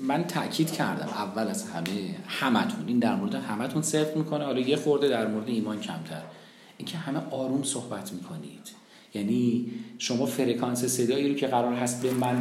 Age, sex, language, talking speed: 40-59, male, Persian, 175 wpm